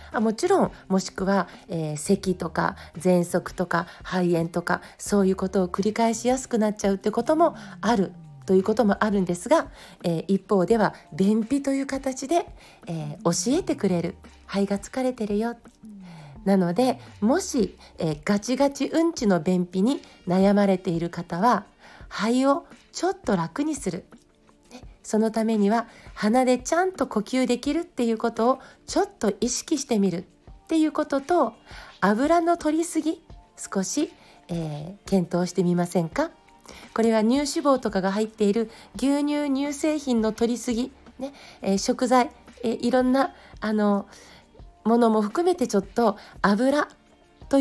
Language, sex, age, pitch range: Japanese, female, 40-59, 190-270 Hz